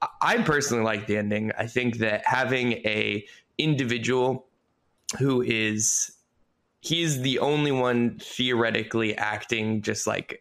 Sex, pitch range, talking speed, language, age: male, 110-145 Hz, 125 wpm, English, 20-39